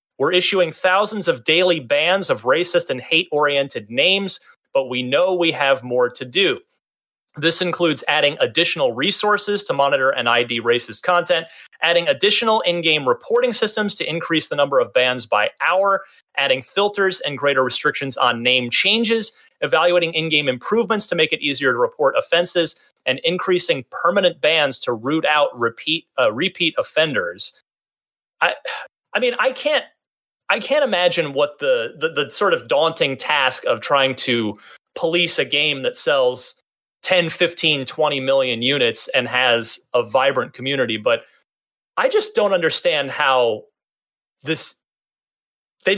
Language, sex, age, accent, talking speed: English, male, 30-49, American, 150 wpm